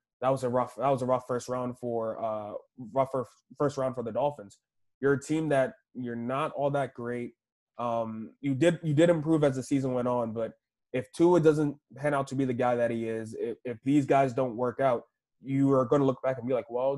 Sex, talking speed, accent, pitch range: male, 240 wpm, American, 125-145 Hz